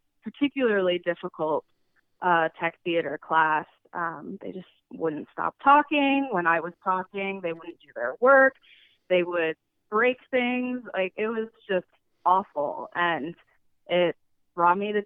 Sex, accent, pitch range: female, American, 170-200 Hz